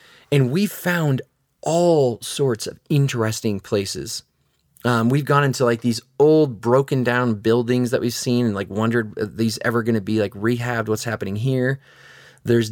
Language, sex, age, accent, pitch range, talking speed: English, male, 30-49, American, 115-150 Hz, 165 wpm